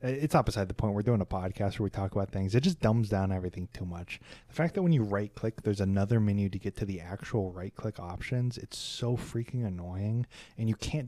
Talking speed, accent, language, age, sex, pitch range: 240 wpm, American, English, 20-39, male, 100-125 Hz